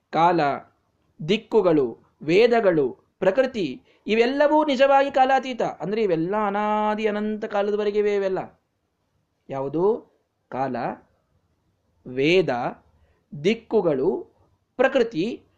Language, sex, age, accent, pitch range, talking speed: Kannada, male, 20-39, native, 175-245 Hz, 70 wpm